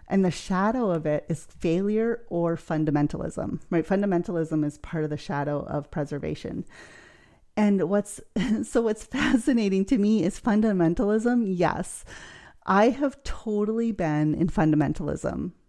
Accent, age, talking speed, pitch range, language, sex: American, 30-49, 130 wpm, 155-195 Hz, English, female